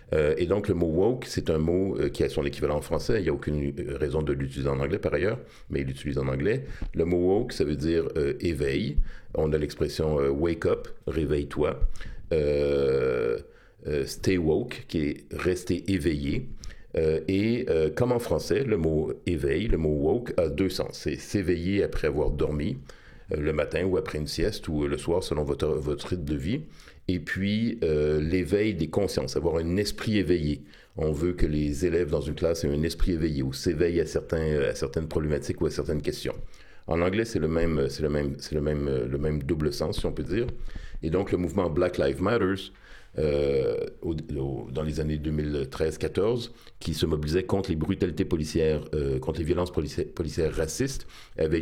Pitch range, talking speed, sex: 75-95 Hz, 215 wpm, male